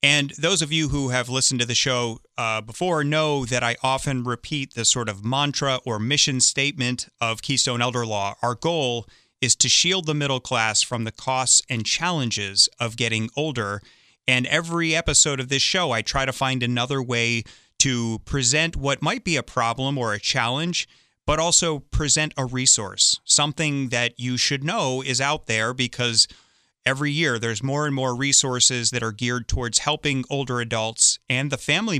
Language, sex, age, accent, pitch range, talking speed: English, male, 30-49, American, 115-140 Hz, 180 wpm